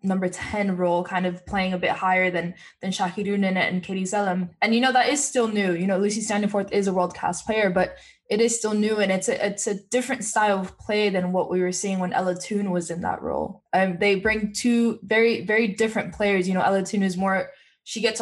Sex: female